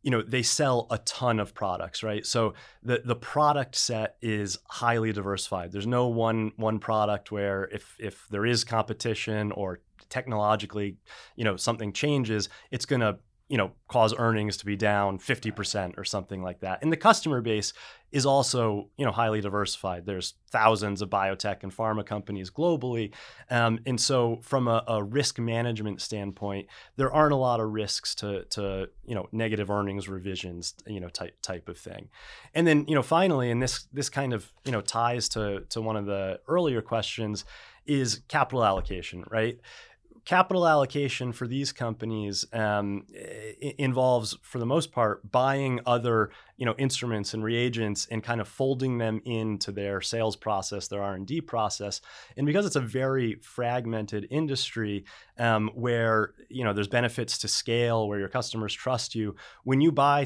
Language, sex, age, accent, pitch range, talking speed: English, male, 30-49, American, 105-125 Hz, 160 wpm